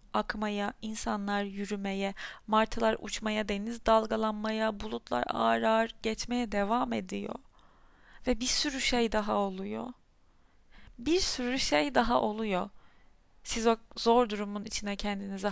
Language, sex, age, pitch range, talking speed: Turkish, female, 30-49, 200-255 Hz, 115 wpm